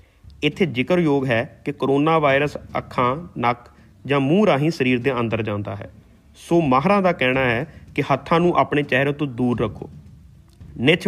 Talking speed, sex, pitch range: 170 wpm, male, 110-150 Hz